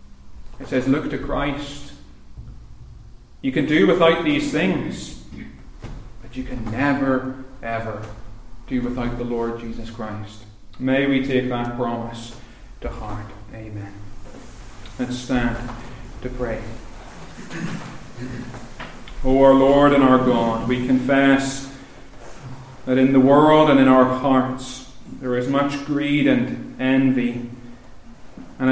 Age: 30-49